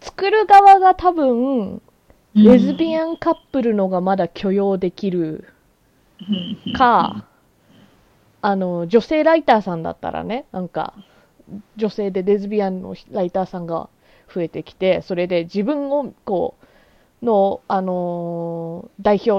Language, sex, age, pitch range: Japanese, female, 20-39, 180-235 Hz